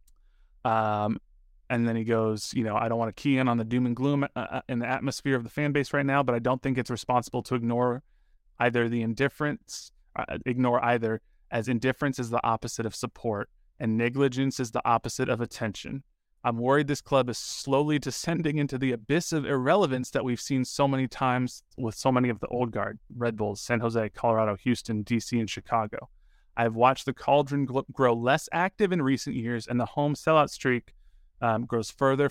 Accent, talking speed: American, 200 wpm